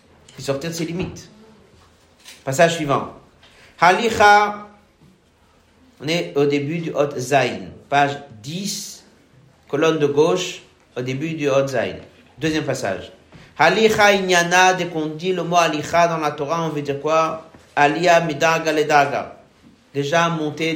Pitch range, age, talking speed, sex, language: 135-180 Hz, 50-69, 135 wpm, male, French